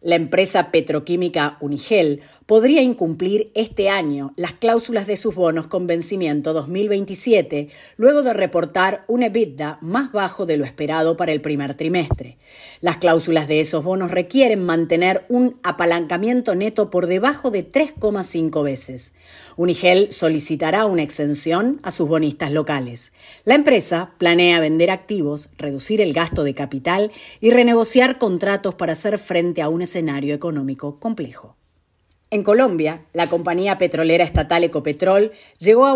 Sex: female